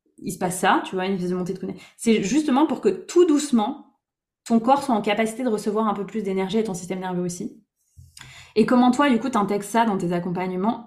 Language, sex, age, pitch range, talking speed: French, female, 20-39, 180-230 Hz, 235 wpm